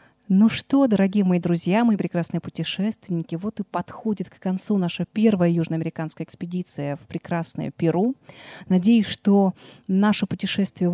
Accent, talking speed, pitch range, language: native, 130 wpm, 170-200 Hz, Russian